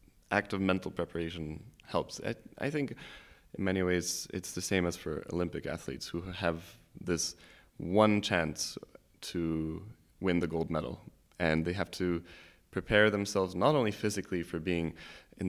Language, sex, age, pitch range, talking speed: Dutch, male, 20-39, 85-100 Hz, 155 wpm